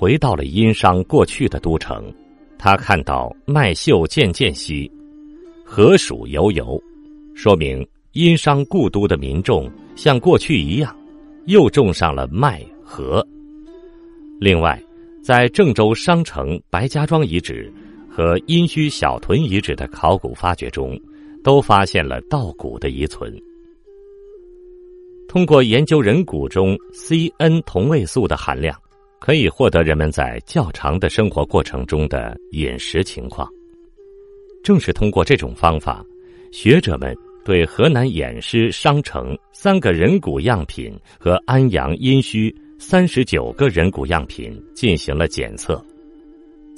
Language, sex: Chinese, male